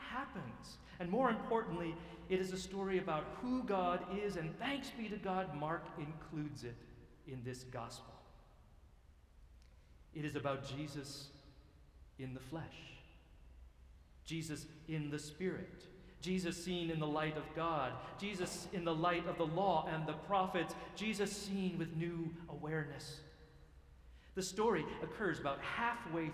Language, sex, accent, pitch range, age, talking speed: English, male, American, 125-180 Hz, 40-59, 140 wpm